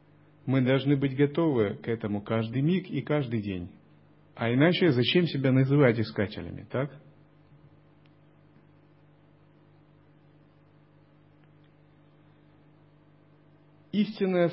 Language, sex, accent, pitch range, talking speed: Russian, male, native, 125-155 Hz, 80 wpm